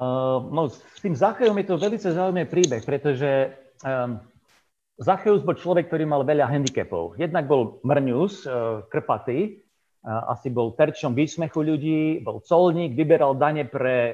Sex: male